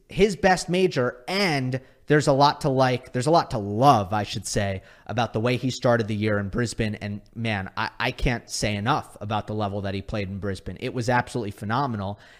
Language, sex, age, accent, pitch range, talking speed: English, male, 30-49, American, 110-145 Hz, 220 wpm